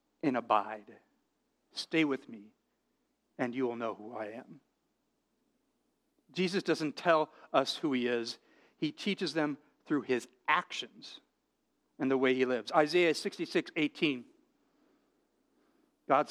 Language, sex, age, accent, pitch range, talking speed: English, male, 50-69, American, 155-265 Hz, 130 wpm